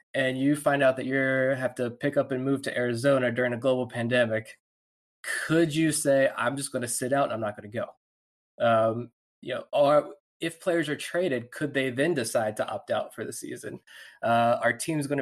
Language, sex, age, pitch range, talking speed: English, male, 20-39, 115-140 Hz, 215 wpm